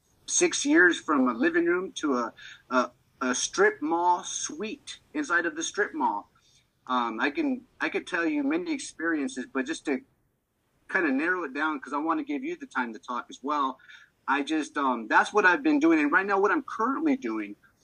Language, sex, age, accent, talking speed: English, male, 30-49, American, 210 wpm